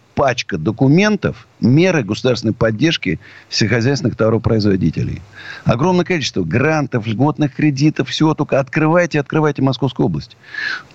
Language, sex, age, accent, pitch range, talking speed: Russian, male, 50-69, native, 105-145 Hz, 100 wpm